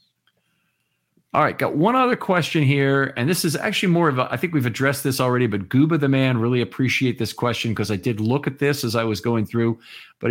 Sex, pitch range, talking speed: male, 105-135 Hz, 235 wpm